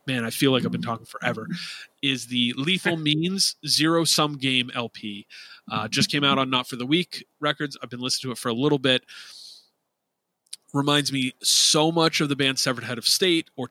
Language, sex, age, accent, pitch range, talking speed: English, male, 30-49, American, 120-150 Hz, 205 wpm